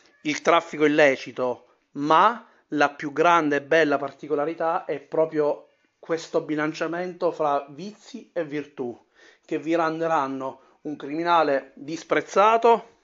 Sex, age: male, 30-49